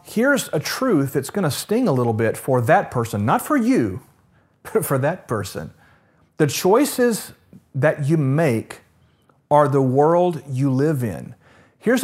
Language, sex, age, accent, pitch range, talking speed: English, male, 40-59, American, 130-180 Hz, 160 wpm